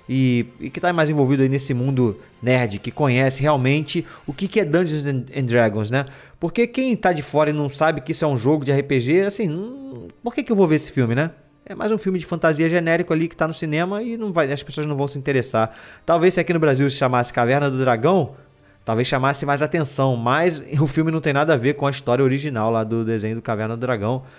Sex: male